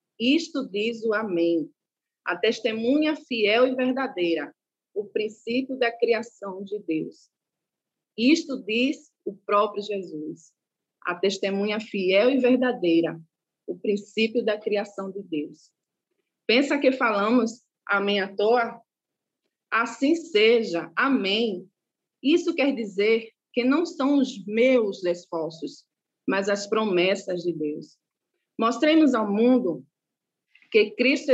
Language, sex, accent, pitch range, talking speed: Portuguese, female, Brazilian, 195-255 Hz, 115 wpm